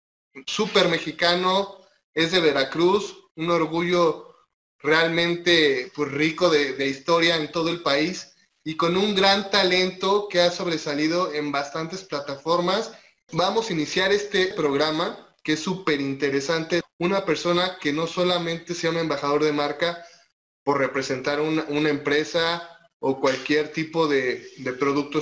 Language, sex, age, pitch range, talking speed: Spanish, male, 20-39, 150-180 Hz, 140 wpm